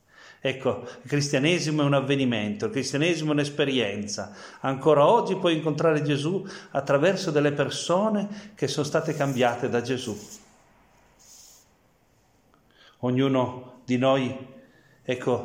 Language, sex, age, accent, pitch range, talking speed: Italian, male, 40-59, native, 120-145 Hz, 110 wpm